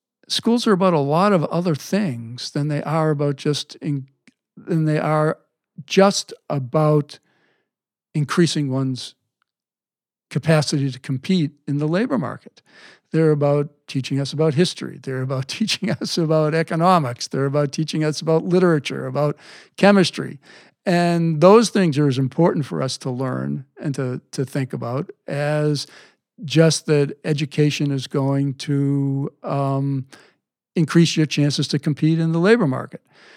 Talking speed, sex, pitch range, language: 145 wpm, male, 135-170 Hz, English